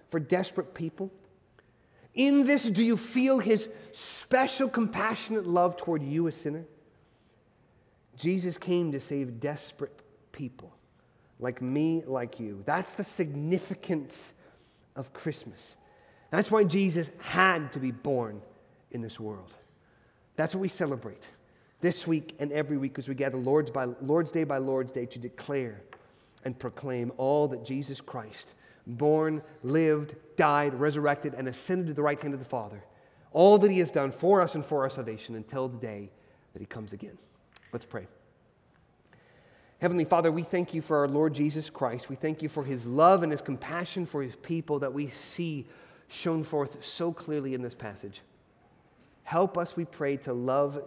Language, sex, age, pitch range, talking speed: English, male, 30-49, 125-165 Hz, 165 wpm